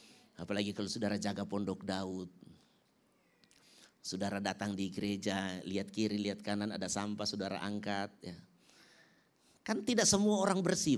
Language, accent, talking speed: Indonesian, native, 130 wpm